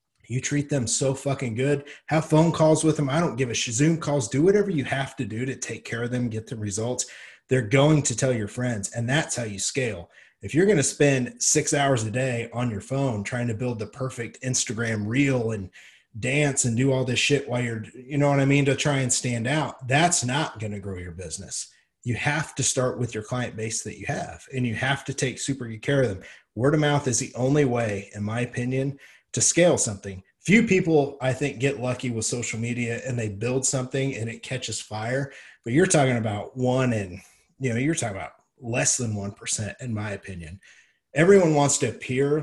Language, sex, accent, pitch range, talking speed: English, male, American, 115-140 Hz, 225 wpm